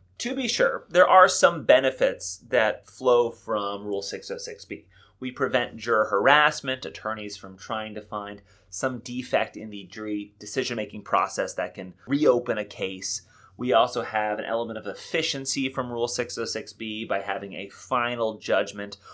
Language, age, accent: English, 30-49, American